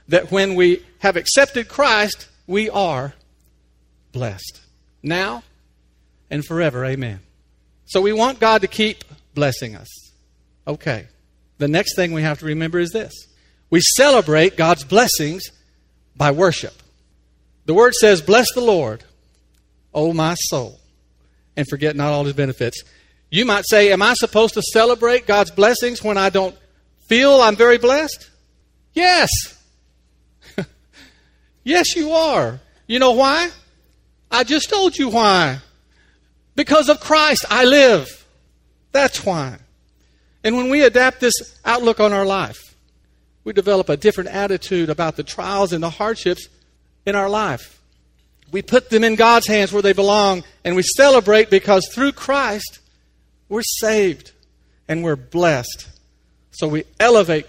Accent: American